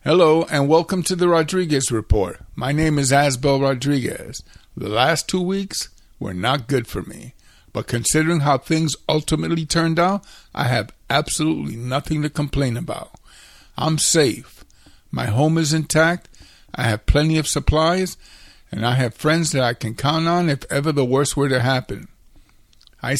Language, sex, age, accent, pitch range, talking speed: English, male, 50-69, American, 130-165 Hz, 165 wpm